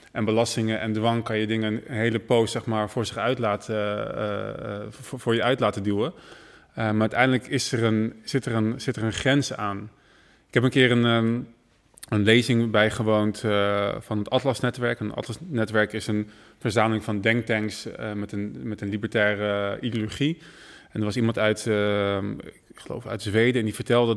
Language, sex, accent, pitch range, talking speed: Dutch, male, Dutch, 110-125 Hz, 195 wpm